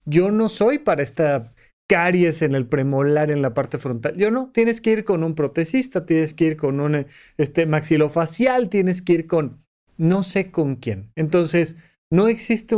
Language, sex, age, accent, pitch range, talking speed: Spanish, male, 30-49, Mexican, 145-195 Hz, 180 wpm